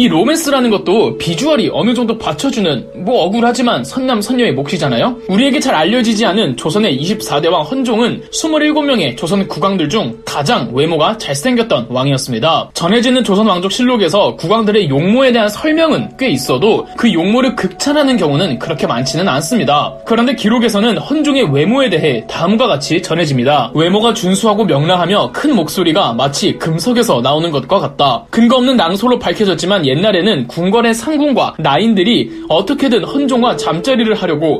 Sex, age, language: male, 20-39, Korean